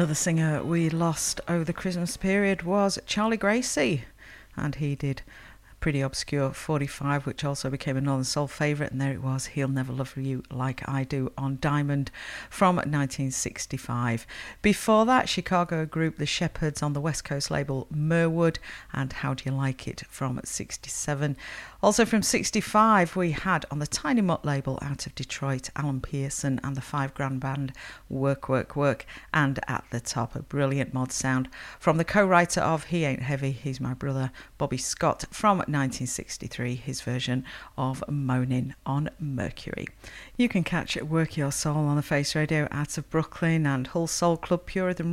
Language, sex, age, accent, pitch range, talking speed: English, female, 50-69, British, 135-170 Hz, 170 wpm